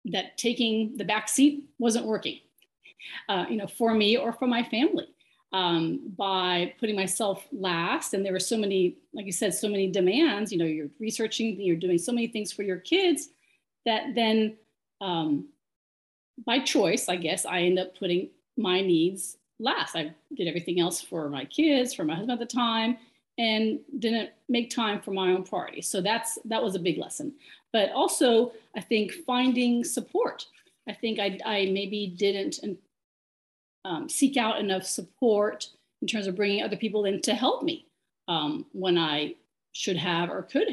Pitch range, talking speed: 185-240 Hz, 175 wpm